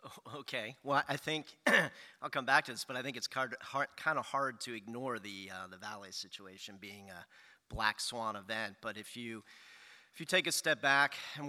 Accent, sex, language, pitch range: American, male, English, 105-130 Hz